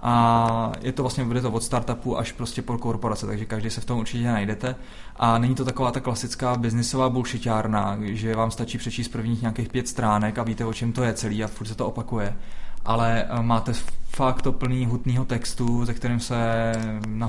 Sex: male